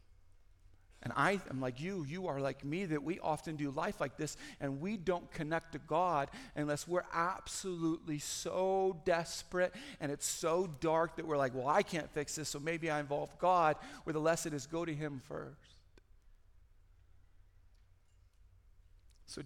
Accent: American